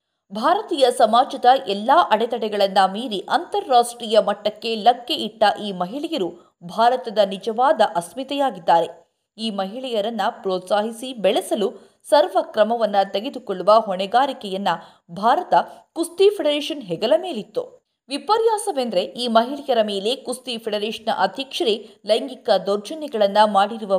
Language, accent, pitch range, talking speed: Kannada, native, 200-275 Hz, 95 wpm